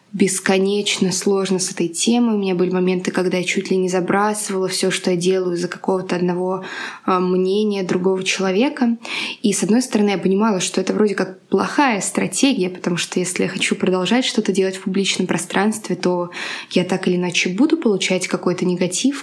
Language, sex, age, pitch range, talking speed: Russian, female, 20-39, 185-215 Hz, 180 wpm